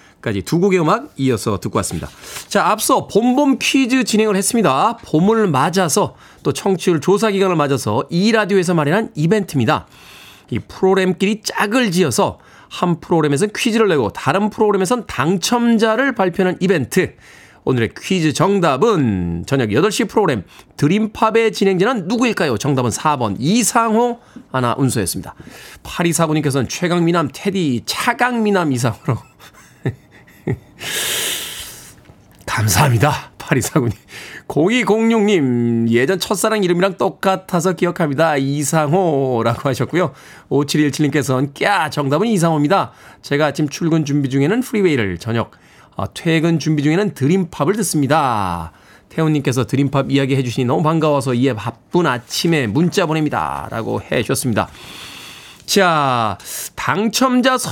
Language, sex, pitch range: Korean, male, 140-205 Hz